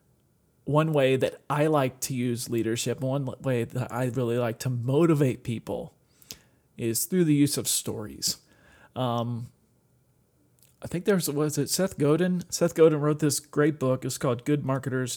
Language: English